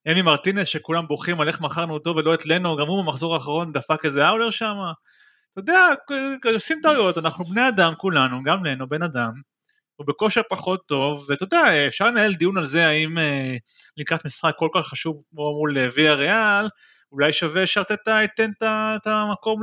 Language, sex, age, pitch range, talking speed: Hebrew, male, 30-49, 145-195 Hz, 180 wpm